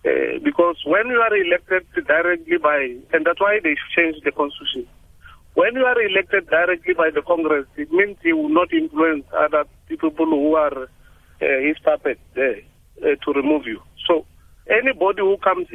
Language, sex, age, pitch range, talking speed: English, male, 50-69, 150-225 Hz, 170 wpm